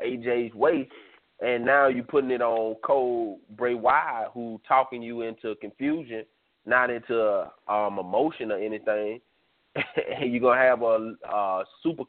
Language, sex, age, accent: English, male, 30-49, American